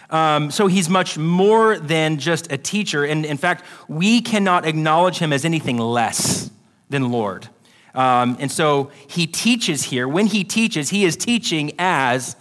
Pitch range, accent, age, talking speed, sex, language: 145-185 Hz, American, 30-49, 165 wpm, male, English